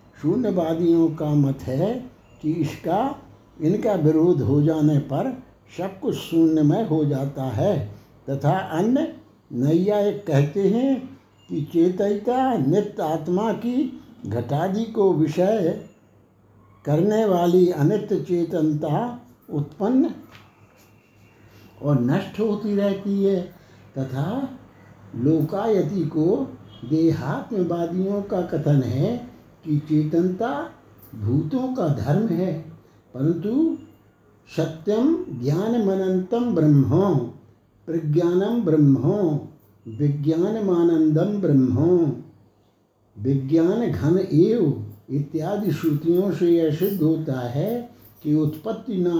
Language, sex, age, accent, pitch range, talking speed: Hindi, male, 60-79, native, 140-190 Hz, 90 wpm